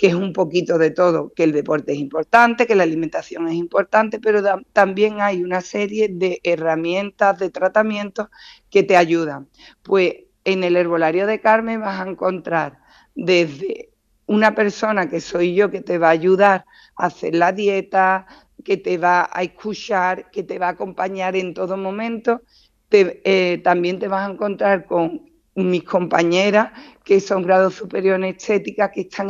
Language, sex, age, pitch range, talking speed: Spanish, female, 50-69, 180-210 Hz, 170 wpm